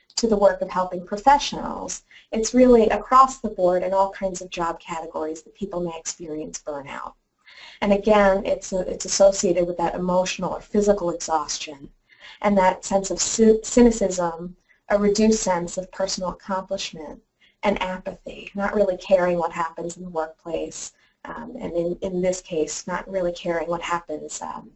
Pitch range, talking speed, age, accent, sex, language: 175-215 Hz, 160 wpm, 30-49, American, female, English